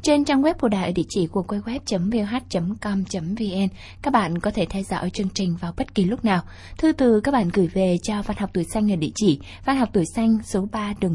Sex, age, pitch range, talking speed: female, 20-39, 185-235 Hz, 250 wpm